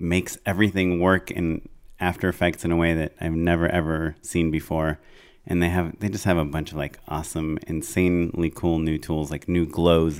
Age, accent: 30-49, American